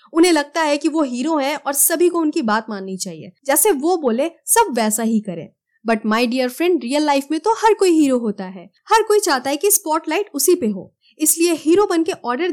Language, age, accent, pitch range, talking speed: Hindi, 20-39, native, 220-350 Hz, 230 wpm